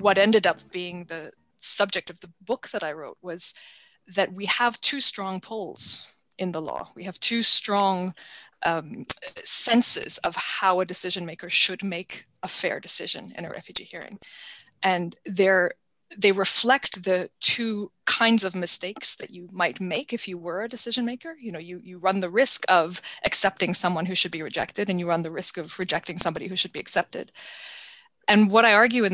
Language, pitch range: English, 175-215 Hz